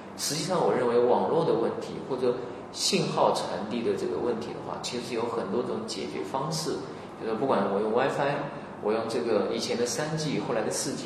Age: 30-49